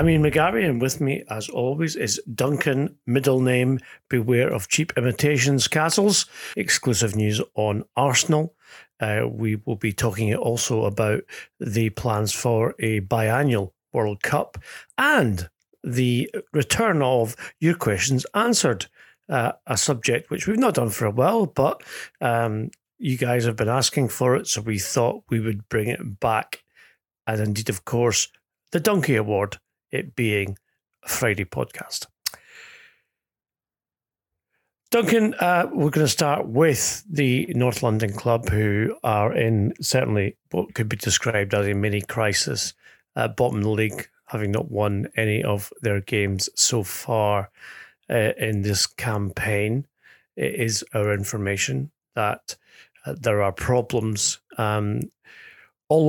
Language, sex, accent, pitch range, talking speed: English, male, British, 105-135 Hz, 140 wpm